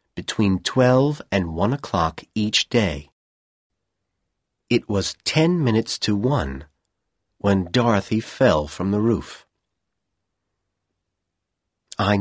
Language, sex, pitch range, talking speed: Persian, male, 90-115 Hz, 100 wpm